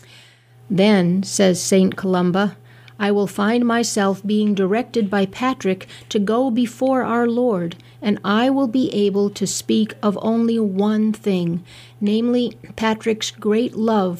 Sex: female